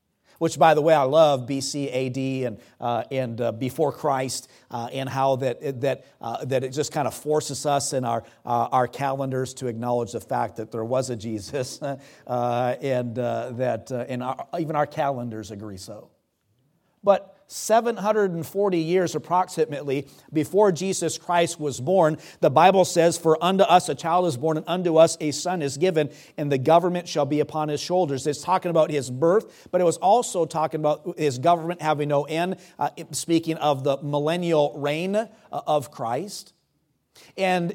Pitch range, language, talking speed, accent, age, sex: 130-170 Hz, English, 180 wpm, American, 50-69, male